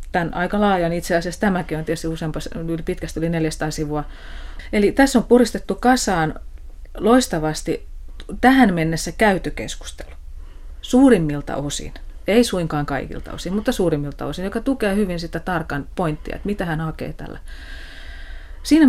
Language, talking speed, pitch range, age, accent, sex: Finnish, 140 wpm, 145-195 Hz, 30-49, native, female